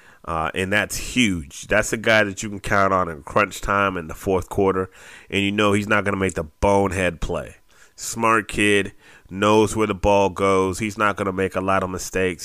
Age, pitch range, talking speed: 30-49, 90-105 Hz, 220 wpm